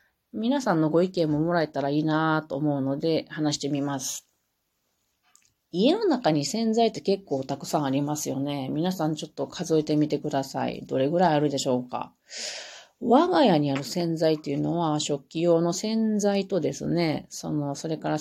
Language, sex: Japanese, female